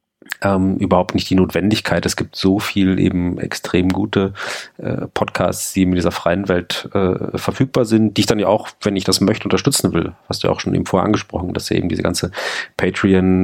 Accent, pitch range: German, 90-100 Hz